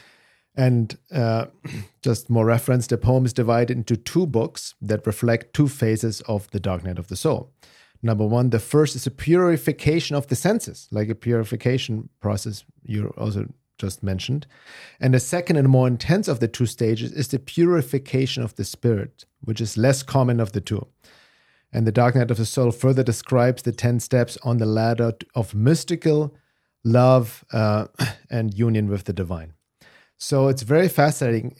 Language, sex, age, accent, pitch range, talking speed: English, male, 50-69, German, 110-135 Hz, 175 wpm